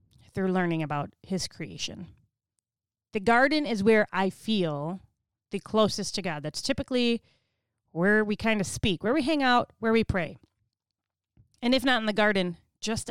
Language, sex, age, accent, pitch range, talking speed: English, female, 30-49, American, 175-255 Hz, 165 wpm